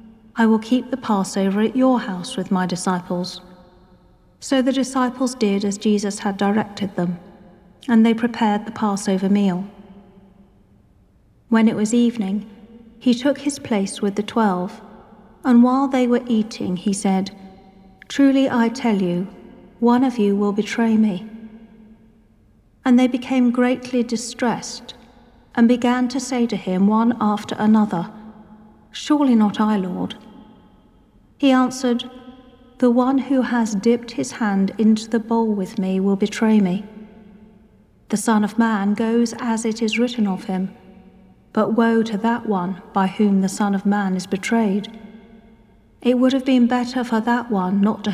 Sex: female